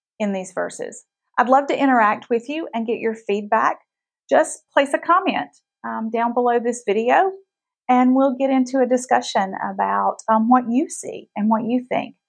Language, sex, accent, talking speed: English, female, American, 180 wpm